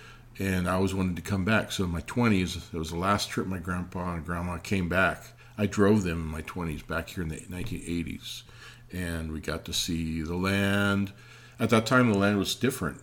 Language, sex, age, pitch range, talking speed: English, male, 40-59, 85-115 Hz, 215 wpm